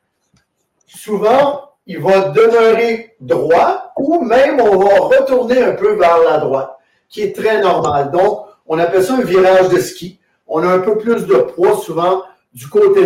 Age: 50-69